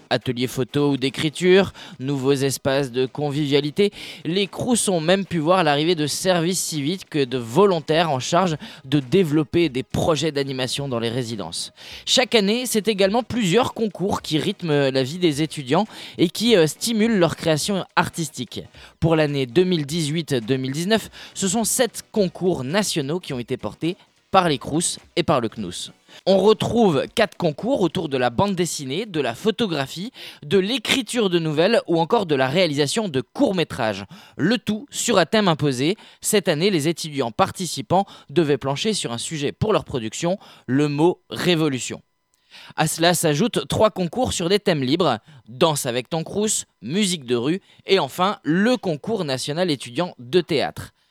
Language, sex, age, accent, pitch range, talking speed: French, male, 20-39, French, 140-190 Hz, 165 wpm